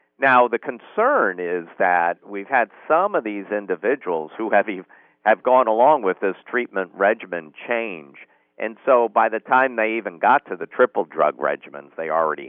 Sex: male